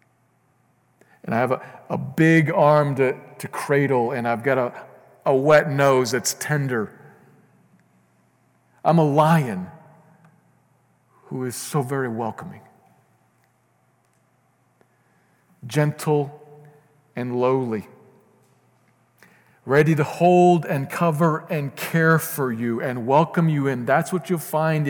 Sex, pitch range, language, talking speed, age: male, 120-155 Hz, English, 115 wpm, 50-69